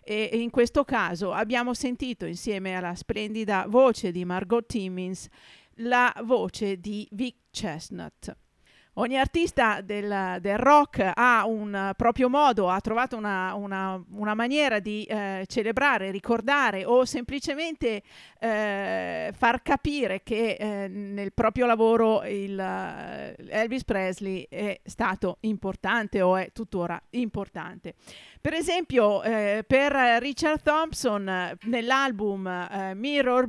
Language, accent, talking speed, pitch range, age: Italian, native, 115 wpm, 195-255 Hz, 40-59